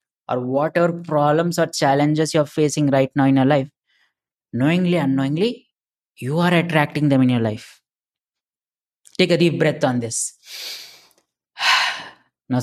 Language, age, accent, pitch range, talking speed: English, 20-39, Indian, 130-165 Hz, 135 wpm